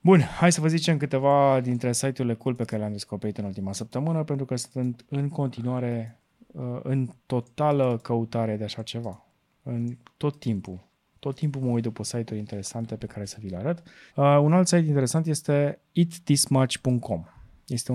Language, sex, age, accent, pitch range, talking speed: Romanian, male, 20-39, native, 110-145 Hz, 165 wpm